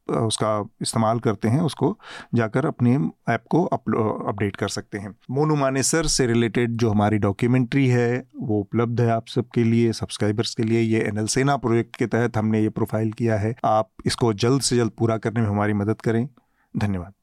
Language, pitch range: Hindi, 110-130 Hz